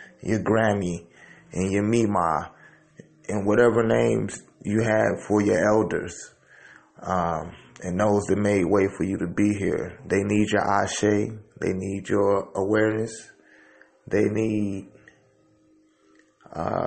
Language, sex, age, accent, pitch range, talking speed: English, male, 30-49, American, 100-125 Hz, 125 wpm